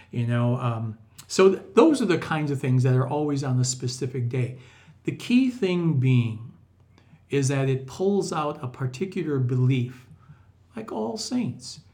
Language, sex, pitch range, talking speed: English, male, 125-155 Hz, 165 wpm